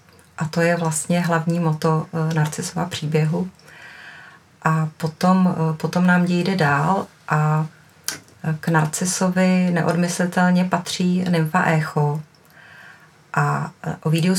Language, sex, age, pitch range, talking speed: Czech, female, 30-49, 160-175 Hz, 105 wpm